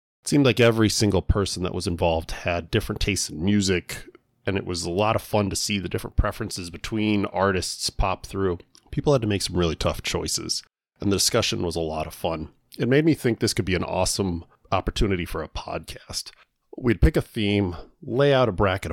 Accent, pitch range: American, 90-110 Hz